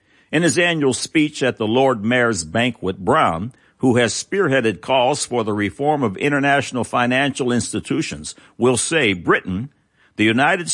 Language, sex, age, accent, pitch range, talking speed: English, male, 60-79, American, 110-150 Hz, 145 wpm